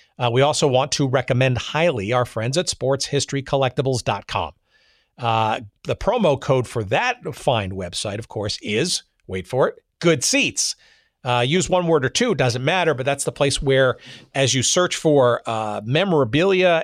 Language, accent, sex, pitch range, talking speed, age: English, American, male, 115-150 Hz, 160 wpm, 50-69